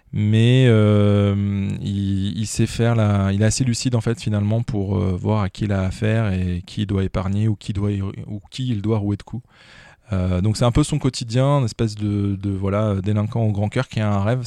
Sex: male